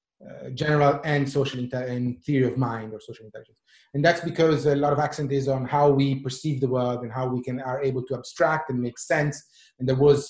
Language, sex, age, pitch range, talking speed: English, male, 30-49, 130-150 Hz, 235 wpm